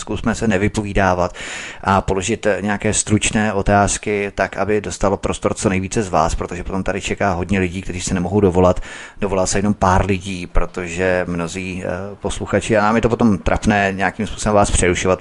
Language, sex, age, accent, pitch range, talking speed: Czech, male, 30-49, native, 90-105 Hz, 175 wpm